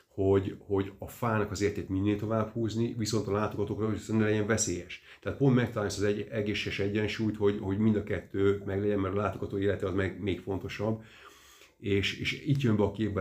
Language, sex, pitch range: Hungarian, male, 95-105 Hz